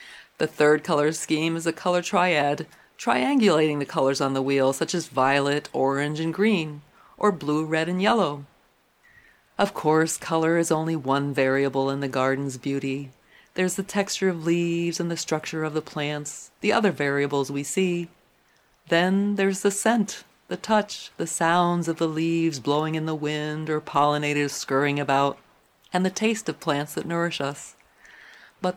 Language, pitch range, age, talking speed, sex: English, 145-175 Hz, 40-59, 165 wpm, female